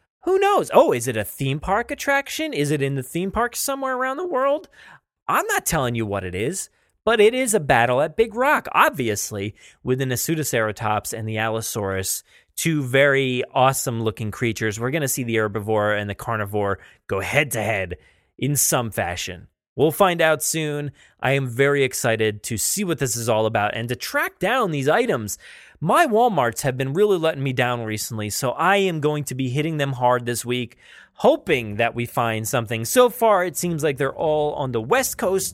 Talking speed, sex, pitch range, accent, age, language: 195 wpm, male, 110-155 Hz, American, 30-49, English